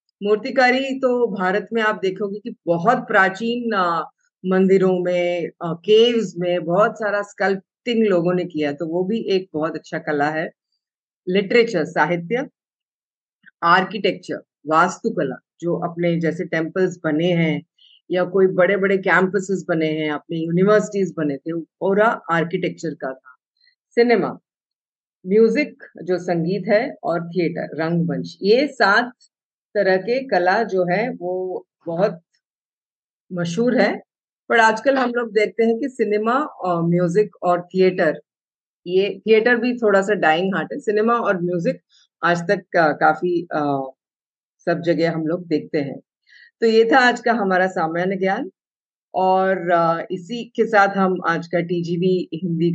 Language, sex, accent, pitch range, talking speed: Hindi, female, native, 170-215 Hz, 135 wpm